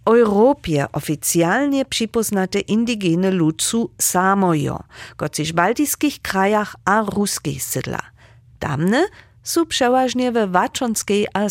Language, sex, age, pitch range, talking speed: German, female, 50-69, 155-240 Hz, 105 wpm